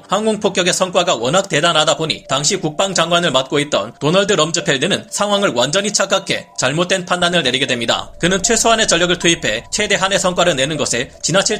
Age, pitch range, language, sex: 30-49, 155-195 Hz, Korean, male